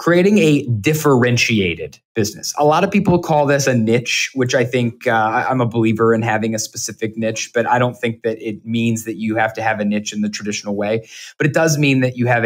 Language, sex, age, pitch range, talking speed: English, male, 20-39, 100-120 Hz, 235 wpm